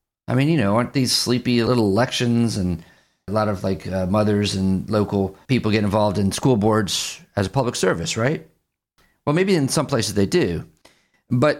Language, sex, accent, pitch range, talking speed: English, male, American, 100-130 Hz, 190 wpm